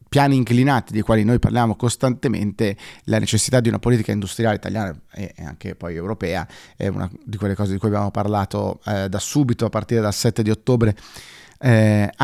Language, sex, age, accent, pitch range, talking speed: Italian, male, 30-49, native, 100-120 Hz, 180 wpm